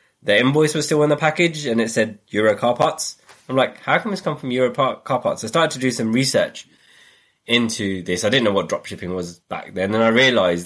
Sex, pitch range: male, 95-115 Hz